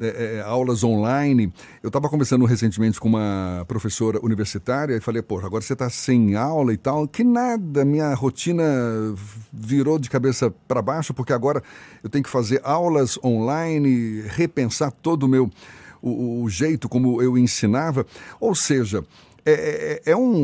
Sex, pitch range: male, 120-160 Hz